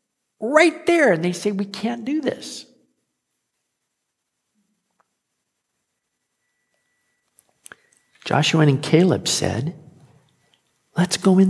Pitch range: 150-210 Hz